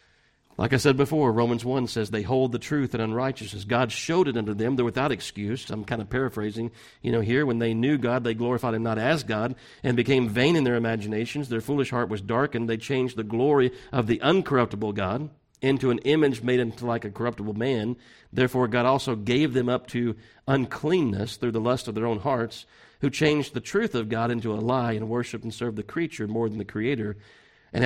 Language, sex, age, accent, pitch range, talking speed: English, male, 40-59, American, 110-135 Hz, 220 wpm